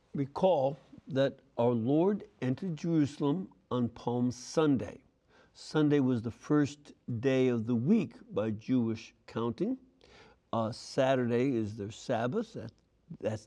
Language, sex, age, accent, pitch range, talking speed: English, male, 60-79, American, 120-155 Hz, 115 wpm